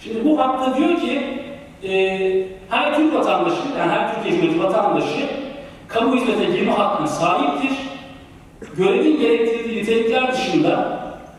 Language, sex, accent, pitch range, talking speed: Turkish, male, native, 220-275 Hz, 120 wpm